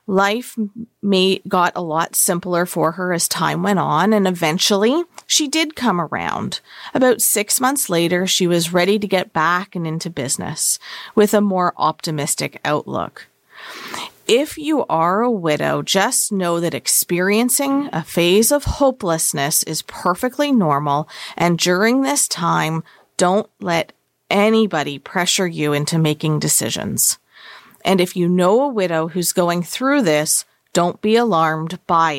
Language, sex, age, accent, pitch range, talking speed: English, female, 40-59, American, 165-215 Hz, 145 wpm